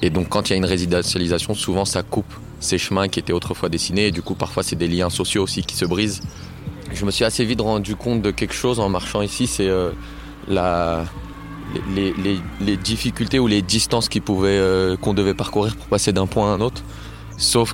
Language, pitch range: French, 95-110 Hz